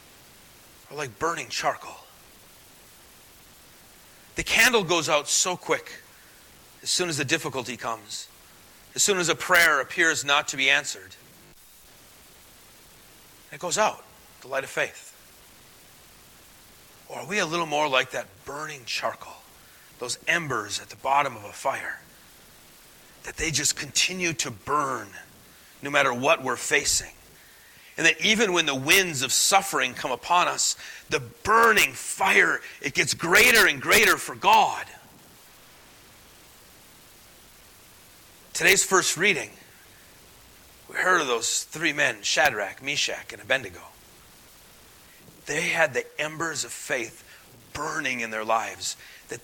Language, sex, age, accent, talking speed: English, male, 40-59, American, 130 wpm